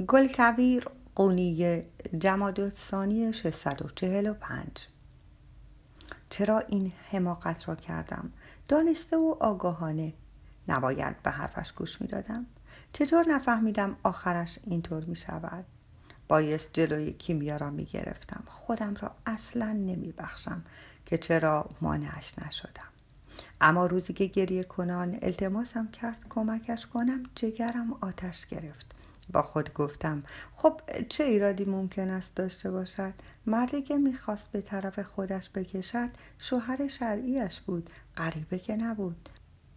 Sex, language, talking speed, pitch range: female, Persian, 115 wpm, 170-235 Hz